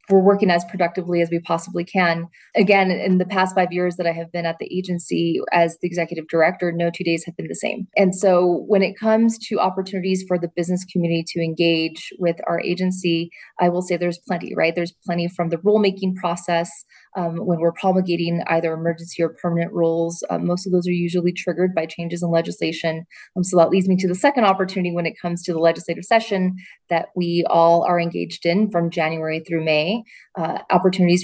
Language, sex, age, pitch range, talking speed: English, female, 20-39, 170-185 Hz, 205 wpm